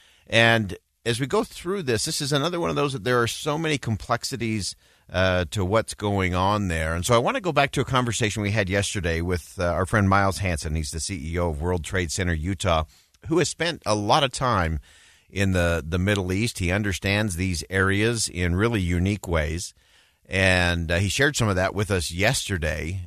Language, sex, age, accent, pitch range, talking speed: English, male, 50-69, American, 90-125 Hz, 210 wpm